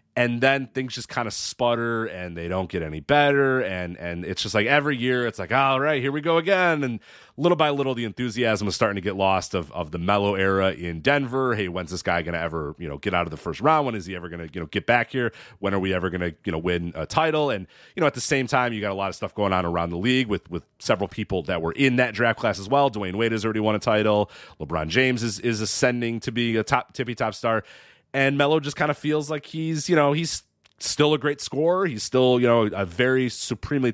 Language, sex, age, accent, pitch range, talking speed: English, male, 30-49, American, 95-135 Hz, 265 wpm